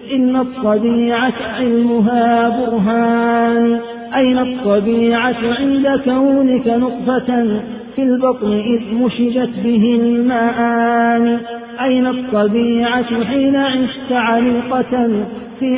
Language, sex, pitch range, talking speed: Arabic, male, 235-250 Hz, 80 wpm